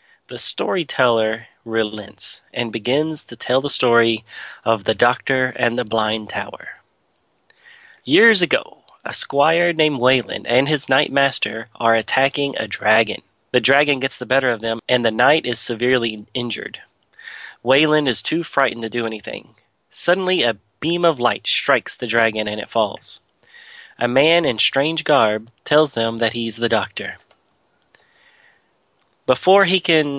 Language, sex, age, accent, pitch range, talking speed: English, male, 30-49, American, 115-150 Hz, 150 wpm